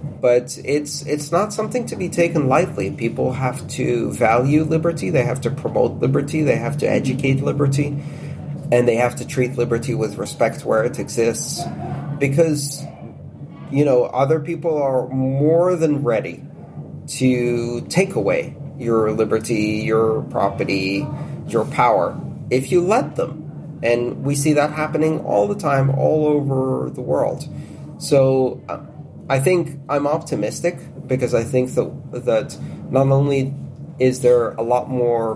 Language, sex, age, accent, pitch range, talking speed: English, male, 30-49, American, 115-150 Hz, 145 wpm